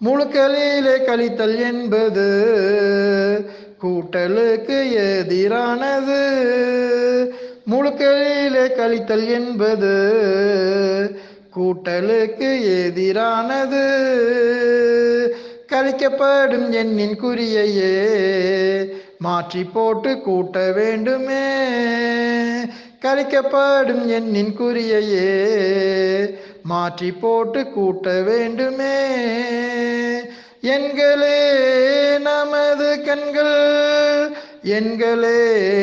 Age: 60-79